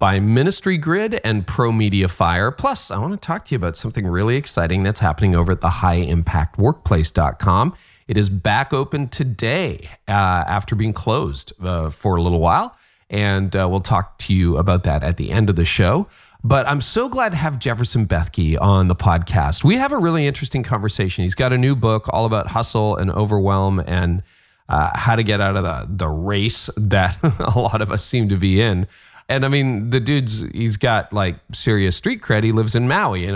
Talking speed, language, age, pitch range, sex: 205 wpm, English, 40-59, 95-125 Hz, male